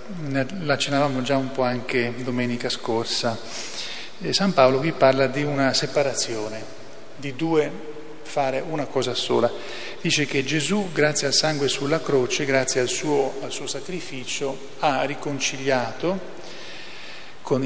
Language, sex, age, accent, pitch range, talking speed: Italian, male, 40-59, native, 130-155 Hz, 125 wpm